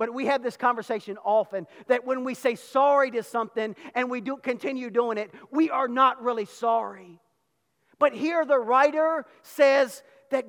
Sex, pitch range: male, 205-275 Hz